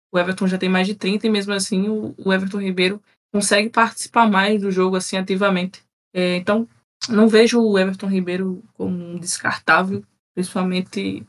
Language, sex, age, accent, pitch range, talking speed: Portuguese, female, 20-39, Brazilian, 185-210 Hz, 165 wpm